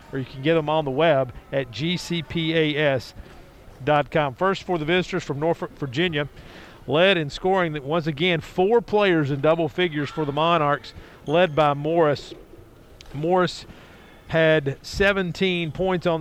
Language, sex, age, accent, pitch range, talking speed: English, male, 50-69, American, 155-185 Hz, 145 wpm